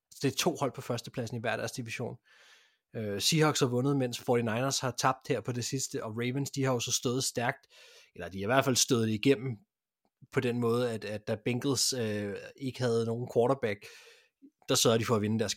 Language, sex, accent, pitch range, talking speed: Danish, male, native, 110-135 Hz, 220 wpm